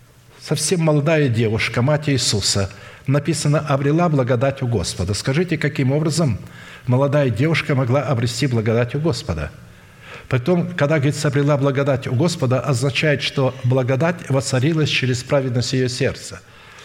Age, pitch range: 60-79, 115-155 Hz